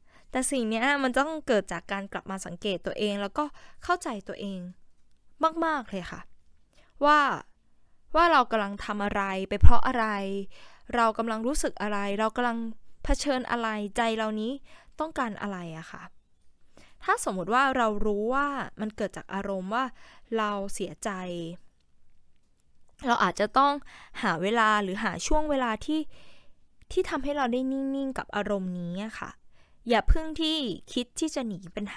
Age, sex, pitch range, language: 10-29, female, 200-270 Hz, Thai